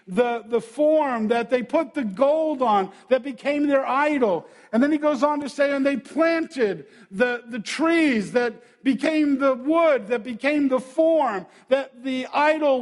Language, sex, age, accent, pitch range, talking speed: English, male, 50-69, American, 220-290 Hz, 175 wpm